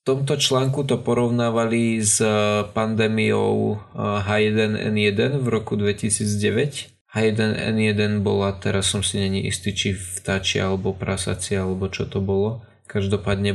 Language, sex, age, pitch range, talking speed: Slovak, male, 20-39, 100-115 Hz, 120 wpm